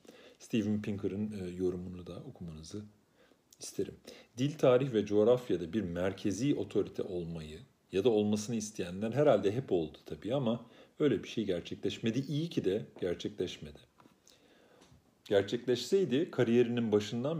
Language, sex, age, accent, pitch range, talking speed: Turkish, male, 40-59, native, 90-120 Hz, 115 wpm